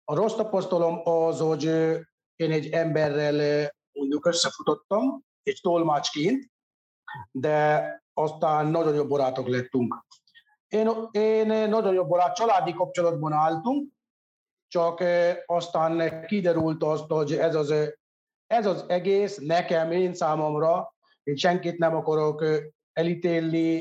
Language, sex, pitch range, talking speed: Hungarian, male, 155-205 Hz, 110 wpm